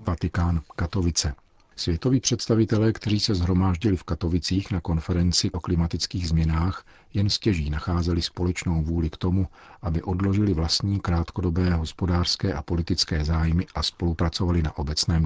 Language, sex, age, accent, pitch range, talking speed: Czech, male, 50-69, native, 80-95 Hz, 130 wpm